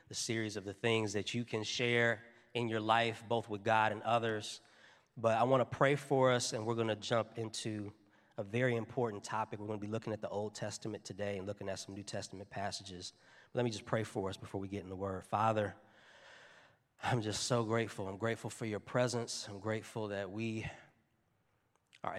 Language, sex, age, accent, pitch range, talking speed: English, male, 20-39, American, 100-115 Hz, 210 wpm